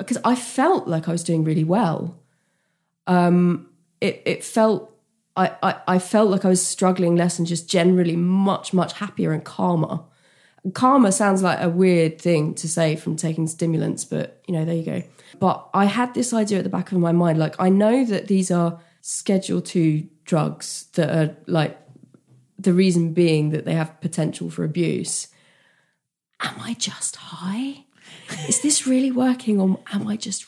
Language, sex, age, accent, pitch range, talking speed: English, female, 20-39, British, 170-235 Hz, 180 wpm